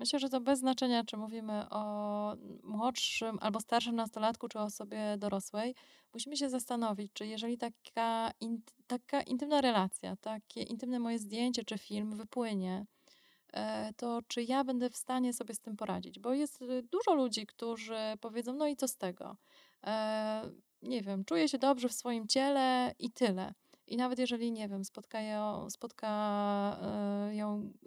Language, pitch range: Polish, 210-255 Hz